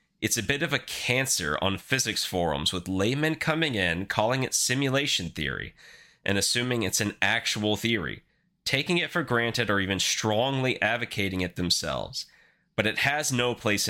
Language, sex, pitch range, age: English, male, 95-130 Hz, 30-49